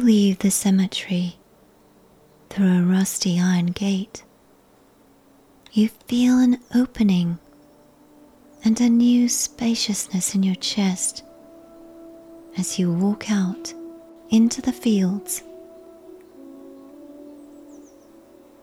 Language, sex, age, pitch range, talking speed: English, female, 30-49, 215-295 Hz, 85 wpm